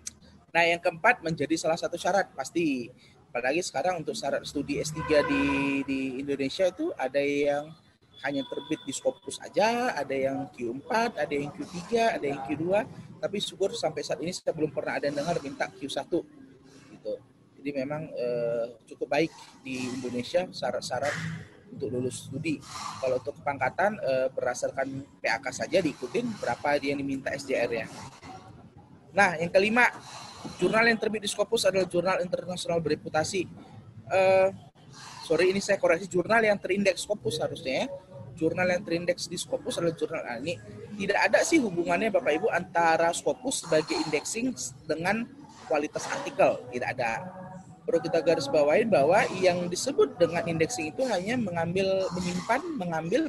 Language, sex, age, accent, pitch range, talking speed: Indonesian, male, 20-39, native, 145-190 Hz, 150 wpm